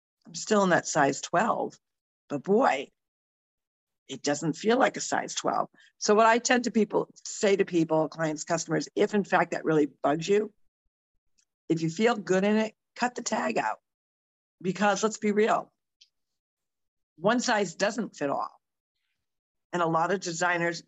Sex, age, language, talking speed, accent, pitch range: female, 50-69, English, 165 wpm, American, 150-195 Hz